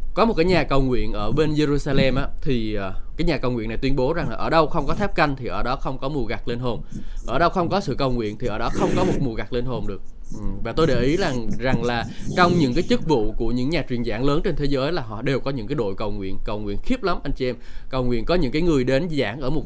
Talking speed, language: 310 wpm, Vietnamese